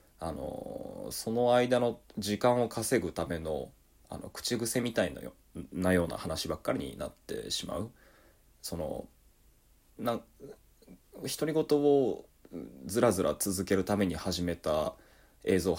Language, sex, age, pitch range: Japanese, male, 20-39, 85-120 Hz